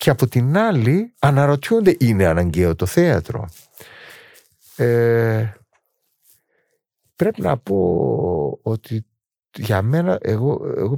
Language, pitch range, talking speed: Greek, 105-140 Hz, 95 wpm